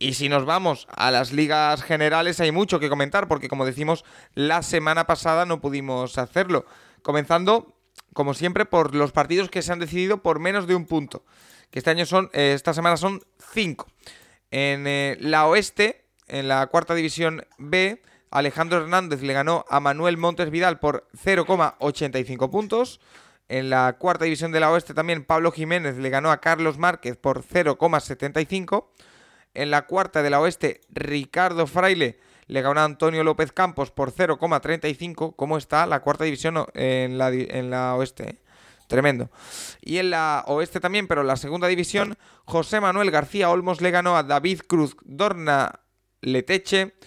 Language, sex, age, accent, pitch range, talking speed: Spanish, male, 20-39, Spanish, 140-180 Hz, 170 wpm